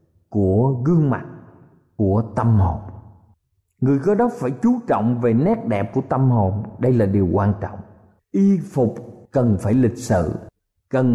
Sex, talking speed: male, 160 wpm